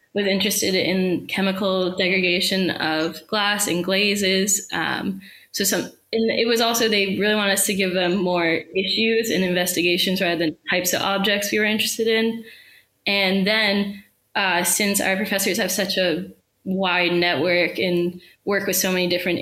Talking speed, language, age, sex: 160 wpm, English, 10-29, female